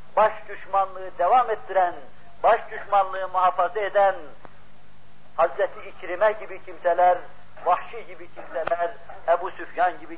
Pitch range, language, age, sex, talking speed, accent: 165-215 Hz, Turkish, 50-69, male, 105 wpm, native